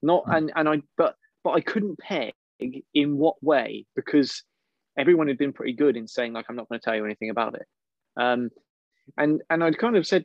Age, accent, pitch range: 20-39, British, 120-150 Hz